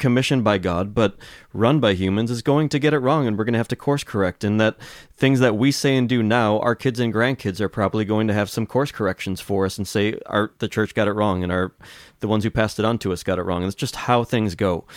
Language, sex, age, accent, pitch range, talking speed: English, male, 30-49, American, 100-120 Hz, 285 wpm